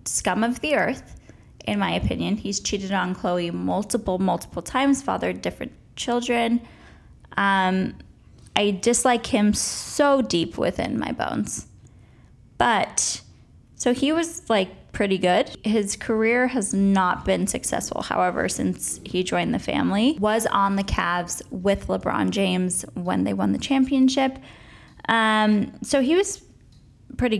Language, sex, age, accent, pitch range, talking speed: English, female, 10-29, American, 190-245 Hz, 135 wpm